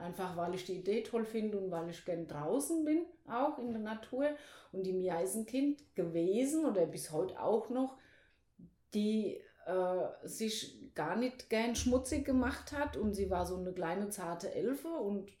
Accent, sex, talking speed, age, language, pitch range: German, female, 170 wpm, 30-49, German, 185-265 Hz